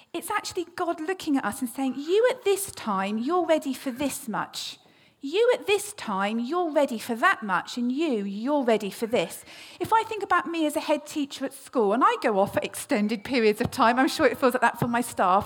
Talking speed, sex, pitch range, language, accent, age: 235 wpm, female, 230-325 Hz, English, British, 40-59